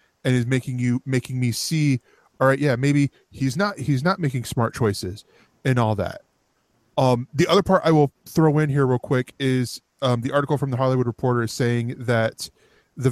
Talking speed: 200 wpm